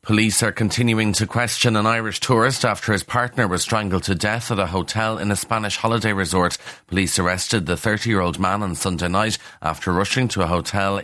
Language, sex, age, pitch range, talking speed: English, male, 30-49, 85-105 Hz, 195 wpm